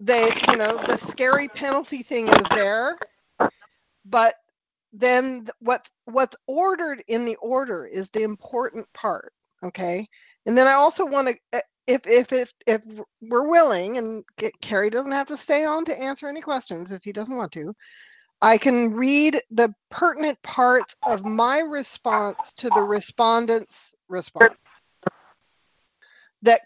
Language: English